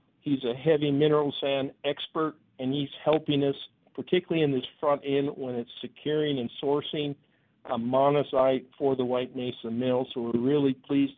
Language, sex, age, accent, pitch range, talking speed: English, male, 50-69, American, 130-145 Hz, 165 wpm